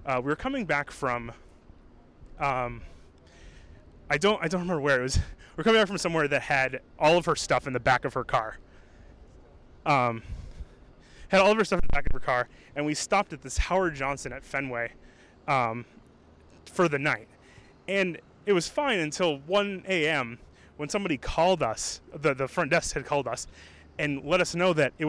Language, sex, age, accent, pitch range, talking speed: English, male, 20-39, American, 130-185 Hz, 195 wpm